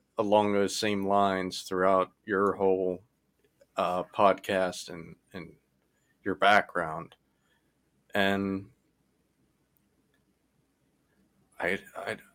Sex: male